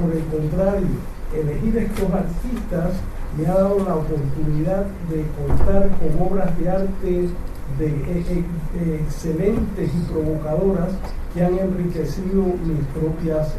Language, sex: Chinese, male